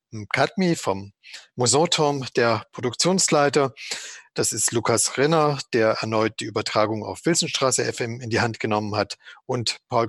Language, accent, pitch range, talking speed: German, German, 110-135 Hz, 135 wpm